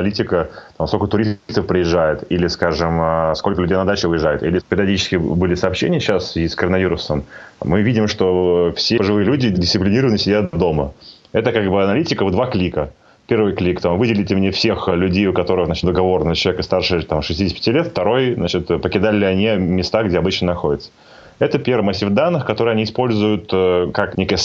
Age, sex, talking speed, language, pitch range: 30-49, male, 170 wpm, Russian, 90-105 Hz